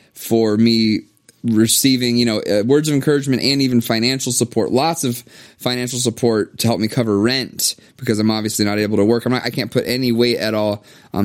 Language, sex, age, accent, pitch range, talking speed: English, male, 20-39, American, 110-135 Hz, 210 wpm